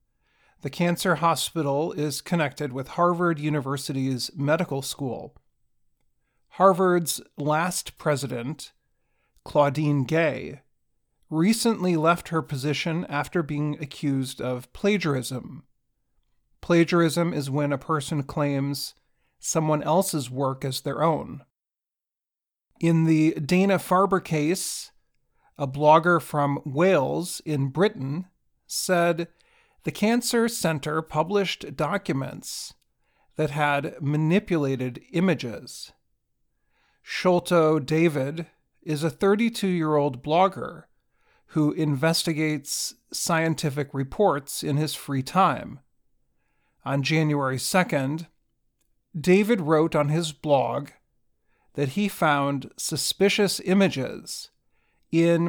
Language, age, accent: English, 40-59, American